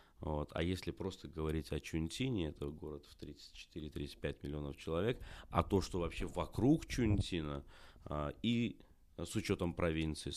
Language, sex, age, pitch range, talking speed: English, male, 30-49, 75-90 Hz, 135 wpm